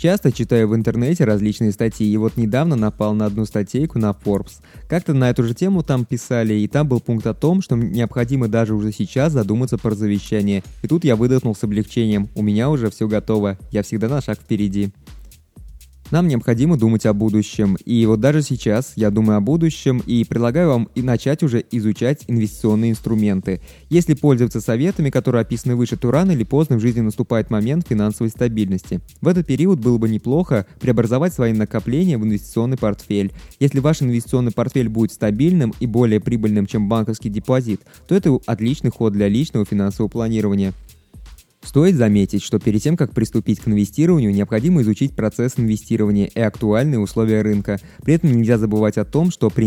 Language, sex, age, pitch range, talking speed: Russian, male, 20-39, 105-130 Hz, 175 wpm